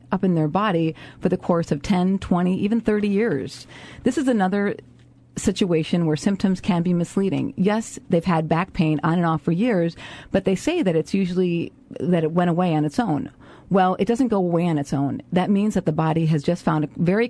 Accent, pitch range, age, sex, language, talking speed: American, 160-195 Hz, 40-59, female, English, 220 wpm